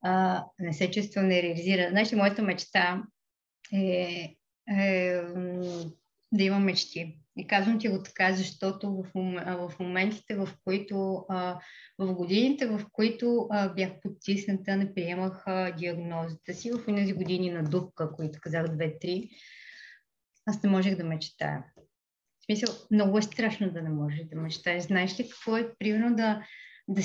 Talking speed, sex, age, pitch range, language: 150 wpm, female, 20-39, 185-230 Hz, Bulgarian